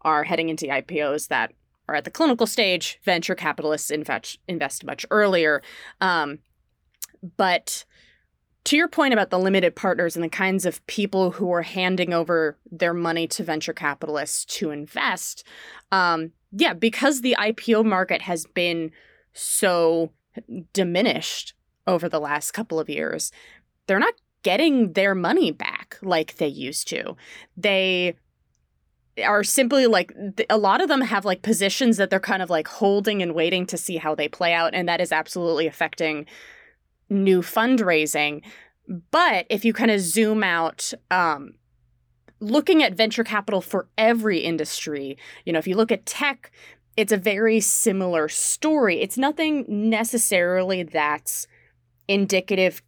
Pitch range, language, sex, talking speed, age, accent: 165-215 Hz, English, female, 150 wpm, 20-39, American